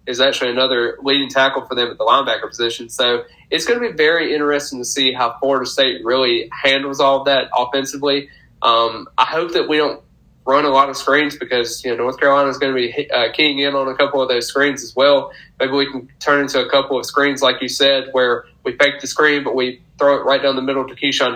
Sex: male